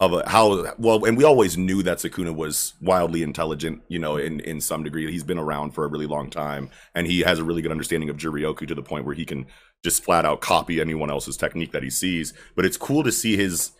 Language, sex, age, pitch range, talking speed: English, male, 30-49, 80-95 Hz, 250 wpm